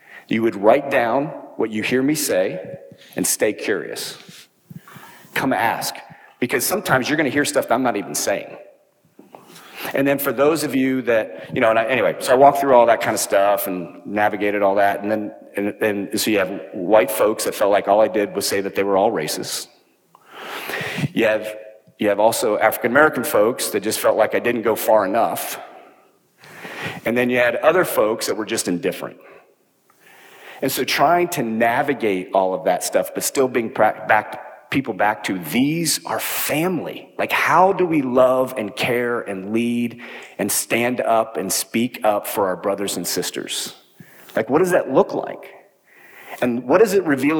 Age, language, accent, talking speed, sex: 40-59, English, American, 190 wpm, male